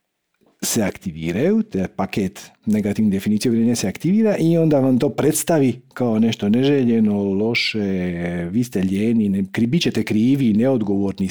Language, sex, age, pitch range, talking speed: Croatian, male, 50-69, 105-150 Hz, 135 wpm